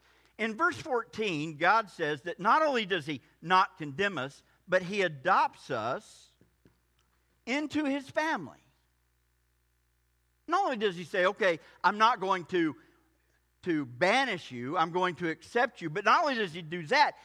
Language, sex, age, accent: English, male, 50-69, American